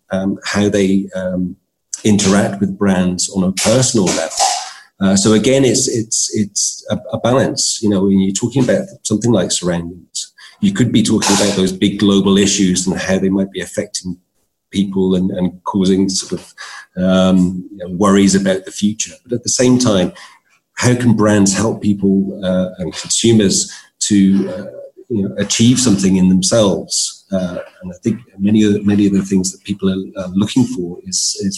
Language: English